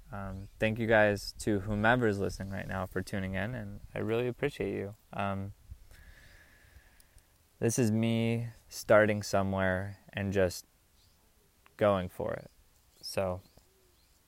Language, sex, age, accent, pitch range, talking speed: English, male, 20-39, American, 95-110 Hz, 125 wpm